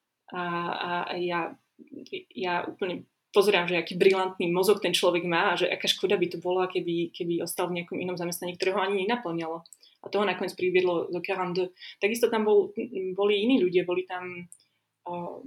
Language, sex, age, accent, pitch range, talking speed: English, female, 20-39, Czech, 180-210 Hz, 175 wpm